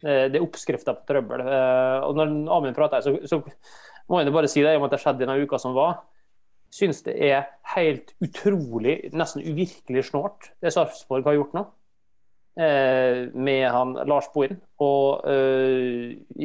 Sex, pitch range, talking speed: male, 130-155 Hz, 170 wpm